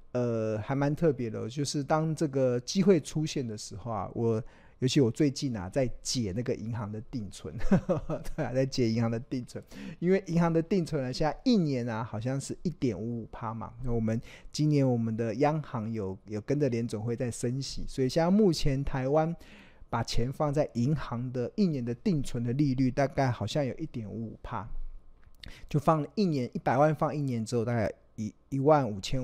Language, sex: Chinese, male